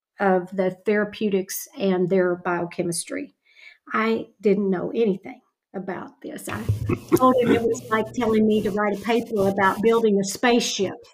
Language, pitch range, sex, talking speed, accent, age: English, 195-230 Hz, female, 150 wpm, American, 50-69